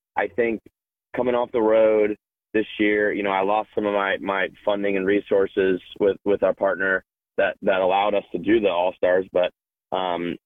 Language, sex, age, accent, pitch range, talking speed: English, male, 20-39, American, 95-105 Hz, 190 wpm